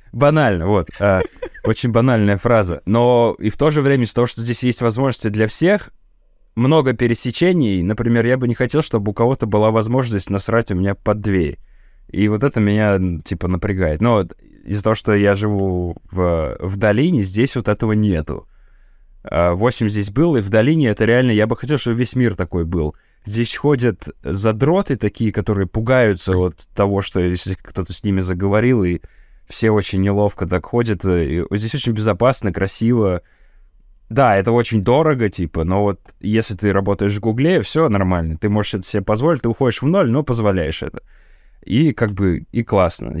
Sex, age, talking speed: male, 20-39, 180 wpm